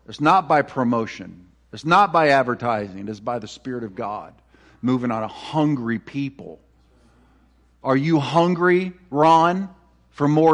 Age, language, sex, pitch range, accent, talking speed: 50-69, English, male, 140-195 Hz, American, 140 wpm